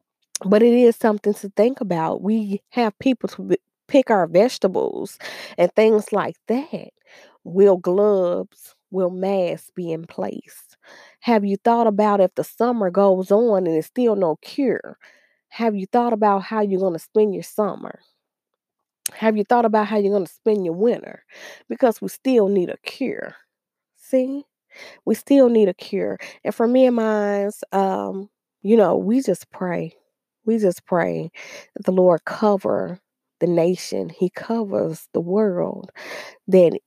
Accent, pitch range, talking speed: American, 195-235 Hz, 160 wpm